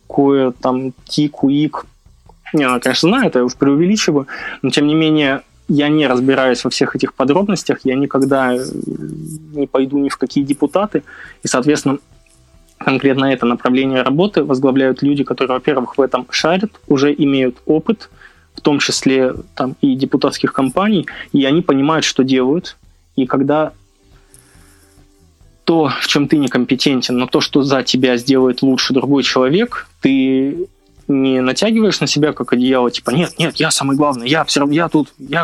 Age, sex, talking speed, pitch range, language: 20-39, male, 155 wpm, 130-150 Hz, Russian